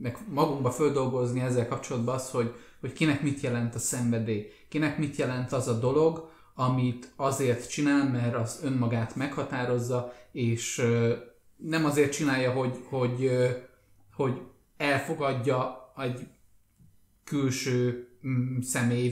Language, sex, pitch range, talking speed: Hungarian, male, 120-145 Hz, 115 wpm